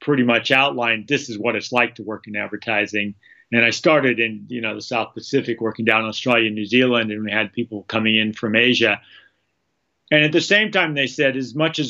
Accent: American